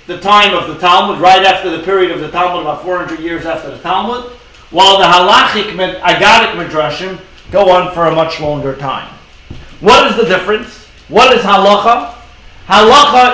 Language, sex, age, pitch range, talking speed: English, male, 40-59, 170-220 Hz, 175 wpm